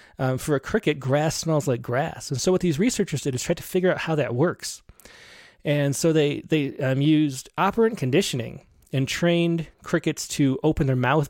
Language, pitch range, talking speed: English, 135-170 Hz, 195 wpm